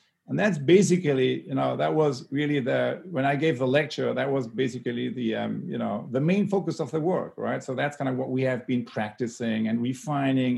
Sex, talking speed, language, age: male, 220 wpm, English, 50-69